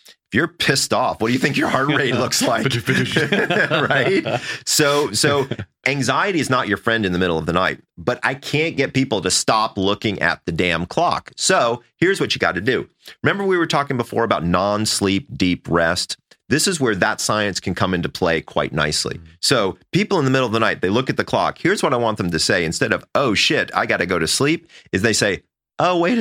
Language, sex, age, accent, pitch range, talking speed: English, male, 30-49, American, 95-130 Hz, 230 wpm